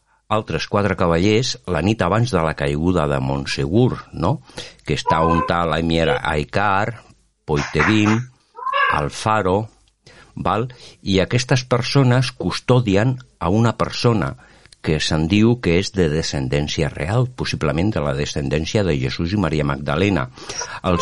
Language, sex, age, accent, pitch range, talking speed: Spanish, male, 50-69, Spanish, 80-110 Hz, 135 wpm